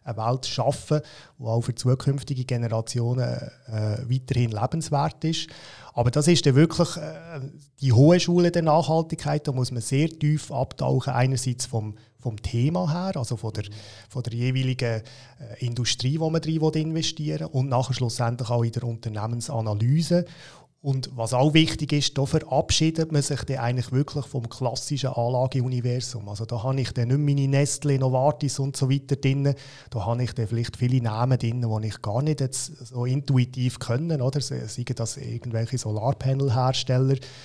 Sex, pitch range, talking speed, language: male, 120-145 Hz, 165 wpm, German